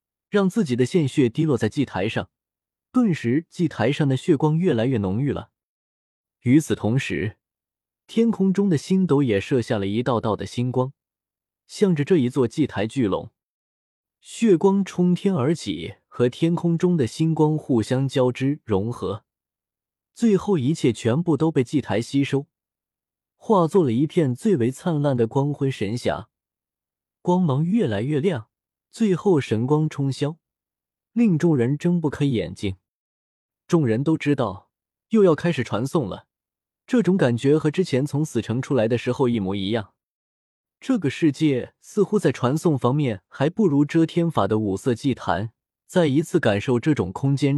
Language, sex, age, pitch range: Chinese, male, 20-39, 115-165 Hz